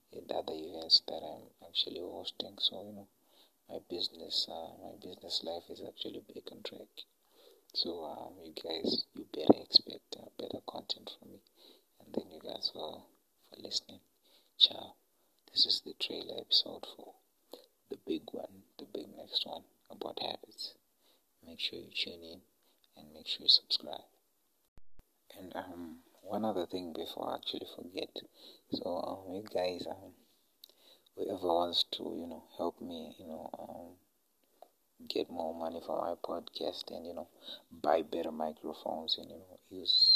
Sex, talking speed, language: male, 160 wpm, English